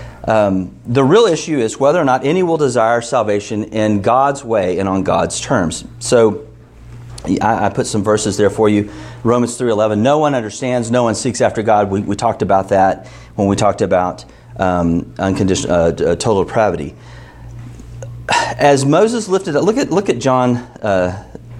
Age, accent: 40-59, American